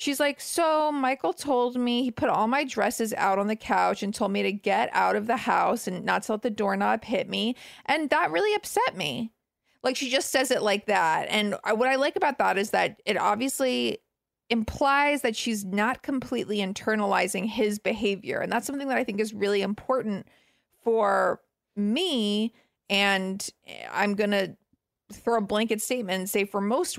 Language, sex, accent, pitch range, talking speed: English, female, American, 205-255 Hz, 185 wpm